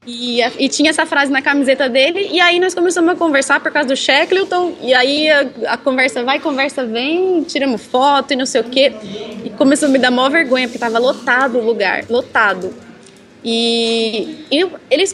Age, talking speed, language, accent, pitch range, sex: 20-39, 200 wpm, Portuguese, Brazilian, 255-350 Hz, female